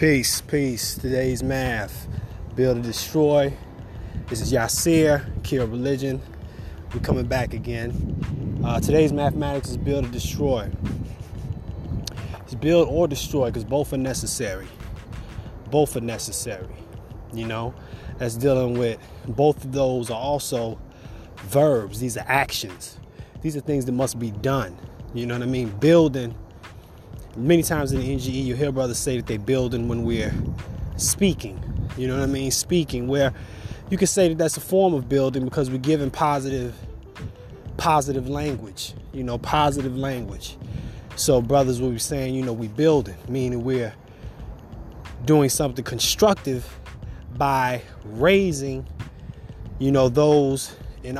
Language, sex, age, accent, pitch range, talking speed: English, male, 20-39, American, 115-140 Hz, 145 wpm